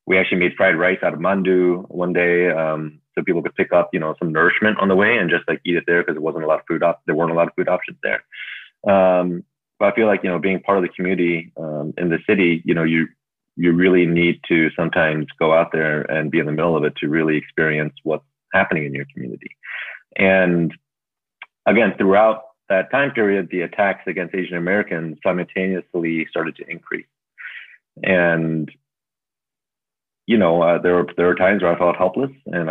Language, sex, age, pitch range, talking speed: English, male, 30-49, 80-90 Hz, 215 wpm